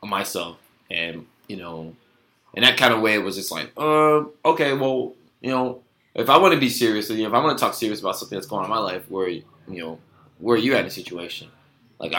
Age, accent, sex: 20-39, American, male